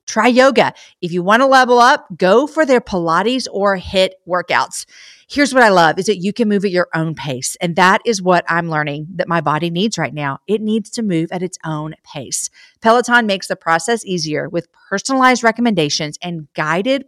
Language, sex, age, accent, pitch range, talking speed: English, female, 40-59, American, 175-235 Hz, 205 wpm